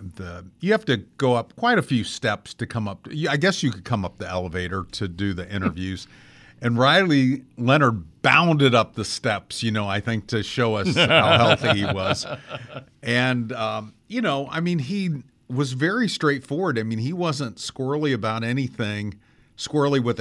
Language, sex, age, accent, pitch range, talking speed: English, male, 50-69, American, 105-125 Hz, 185 wpm